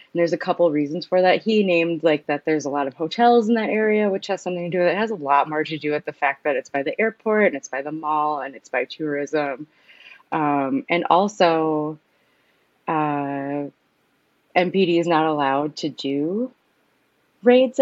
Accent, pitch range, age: American, 150-195 Hz, 20-39